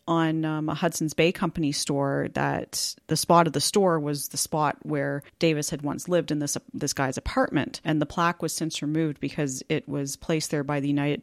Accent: American